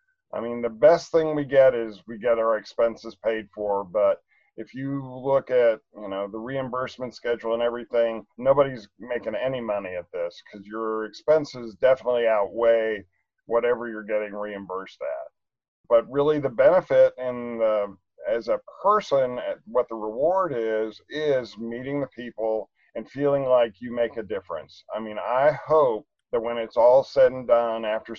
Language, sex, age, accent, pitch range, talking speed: English, male, 50-69, American, 110-130 Hz, 165 wpm